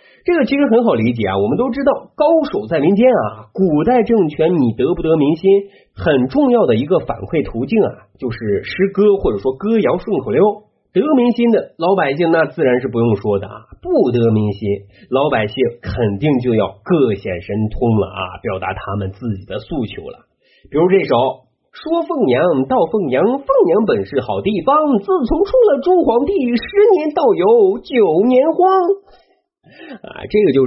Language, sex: Chinese, male